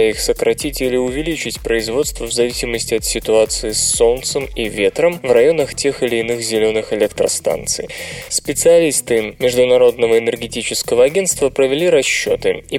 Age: 20-39